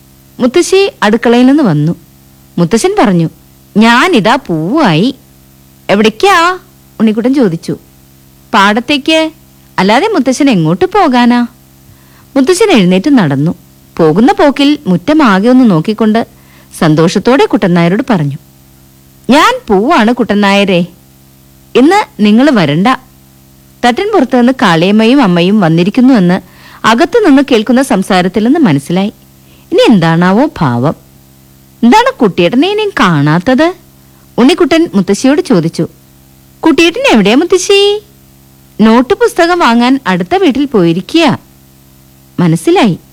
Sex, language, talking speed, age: female, Malayalam, 90 wpm, 50-69